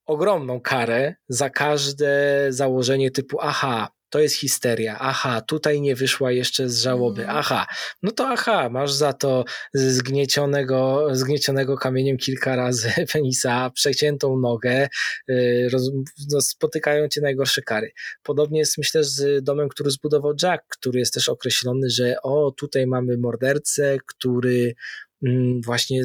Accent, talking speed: native, 125 wpm